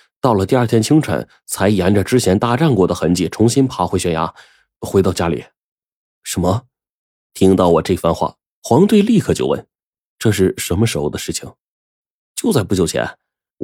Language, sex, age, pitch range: Chinese, male, 20-39, 95-130 Hz